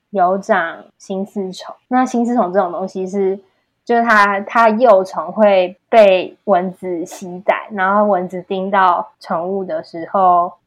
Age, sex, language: 20-39, female, Chinese